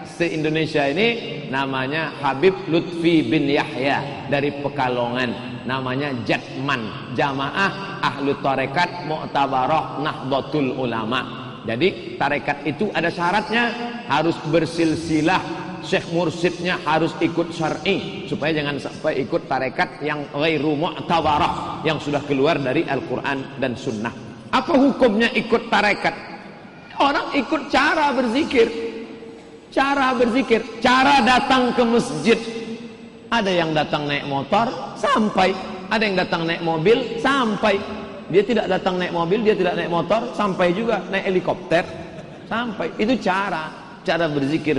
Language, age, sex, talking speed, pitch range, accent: Indonesian, 40-59, male, 120 wpm, 145-210 Hz, native